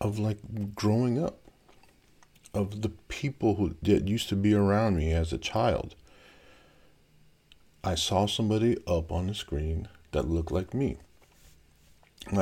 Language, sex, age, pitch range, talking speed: English, male, 50-69, 75-100 Hz, 140 wpm